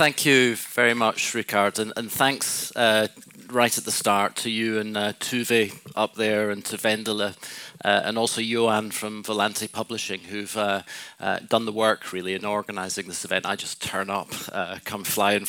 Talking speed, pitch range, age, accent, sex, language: 185 wpm, 105-120 Hz, 40-59, British, male, Swedish